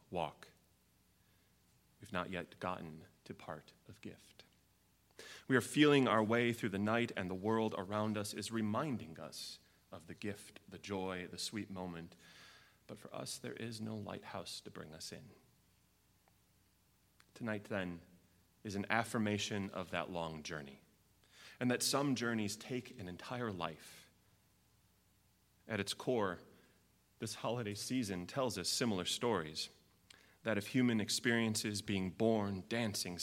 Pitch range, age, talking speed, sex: 95-115 Hz, 30-49, 140 wpm, male